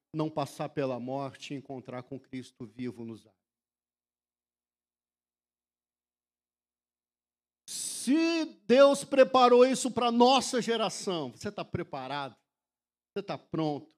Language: Portuguese